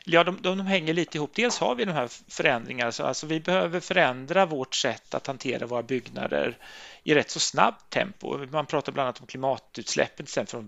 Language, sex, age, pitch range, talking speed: Swedish, male, 30-49, 130-175 Hz, 190 wpm